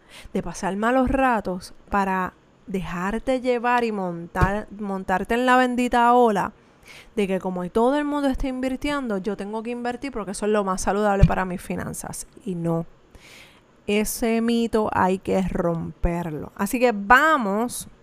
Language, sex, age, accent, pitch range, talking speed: Spanish, female, 20-39, American, 195-245 Hz, 150 wpm